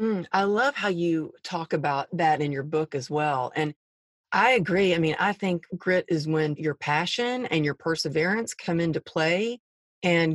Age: 40-59